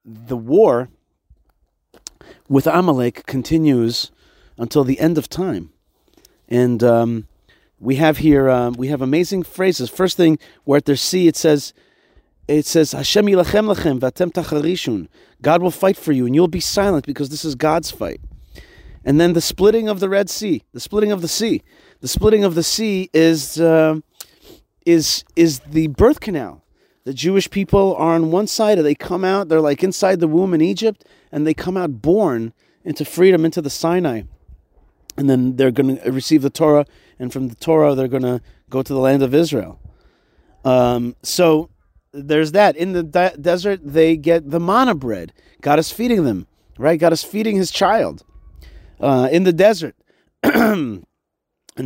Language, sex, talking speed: English, male, 170 wpm